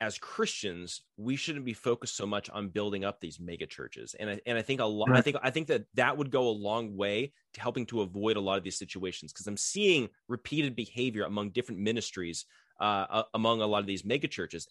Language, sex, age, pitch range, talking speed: English, male, 20-39, 110-140 Hz, 235 wpm